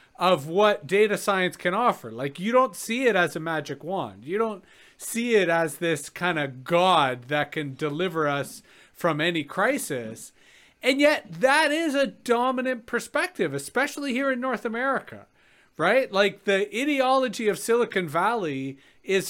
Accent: American